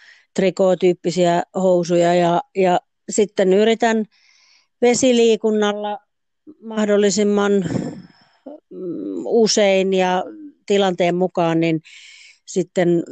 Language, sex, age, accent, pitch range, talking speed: Finnish, female, 40-59, native, 170-215 Hz, 55 wpm